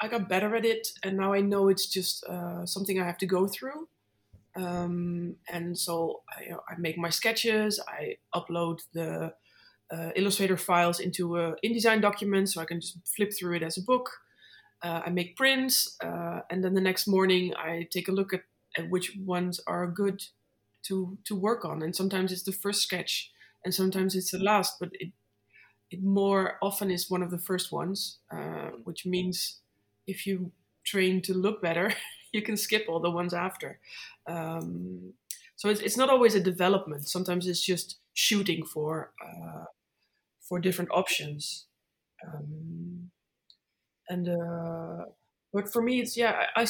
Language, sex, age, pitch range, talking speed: English, female, 20-39, 175-200 Hz, 175 wpm